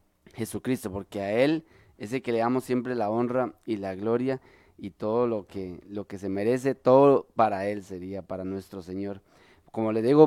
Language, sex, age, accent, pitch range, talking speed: Spanish, male, 20-39, Mexican, 105-135 Hz, 195 wpm